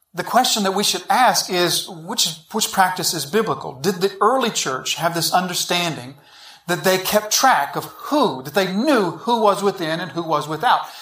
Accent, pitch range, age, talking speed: American, 165-205 Hz, 40-59, 190 wpm